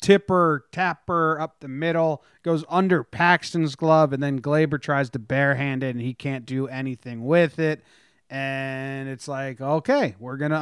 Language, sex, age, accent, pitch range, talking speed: English, male, 30-49, American, 130-160 Hz, 170 wpm